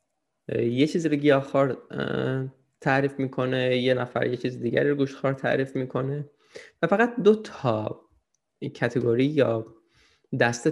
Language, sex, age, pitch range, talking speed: Persian, male, 20-39, 120-150 Hz, 125 wpm